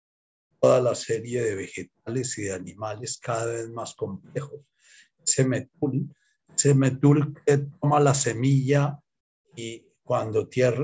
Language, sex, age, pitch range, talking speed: Spanish, male, 50-69, 115-145 Hz, 115 wpm